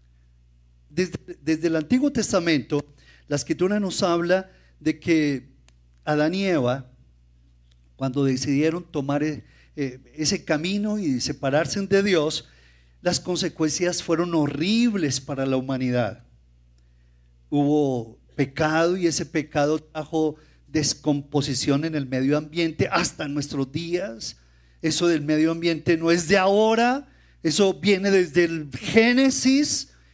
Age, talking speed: 40-59, 115 wpm